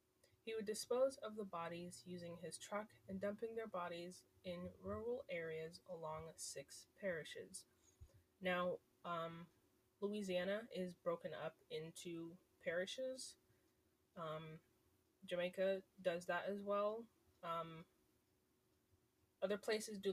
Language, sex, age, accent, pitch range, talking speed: English, female, 20-39, American, 170-210 Hz, 110 wpm